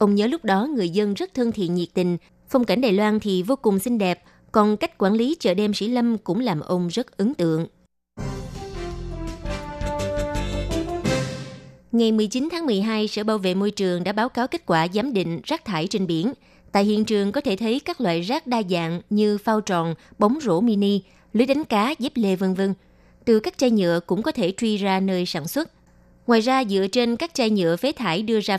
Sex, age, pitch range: female, 20-39, 175-230 Hz